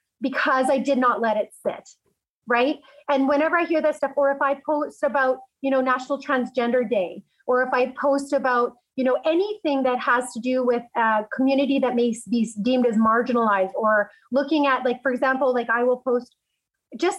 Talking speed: 195 wpm